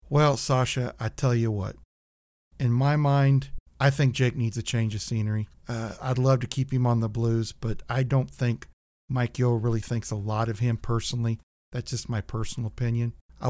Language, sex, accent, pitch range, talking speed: English, male, American, 115-145 Hz, 200 wpm